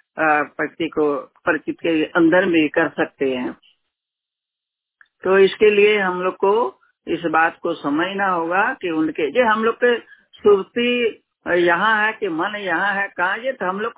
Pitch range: 160-240 Hz